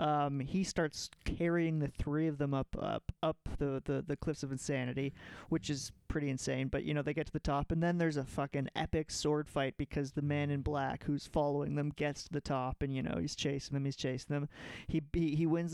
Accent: American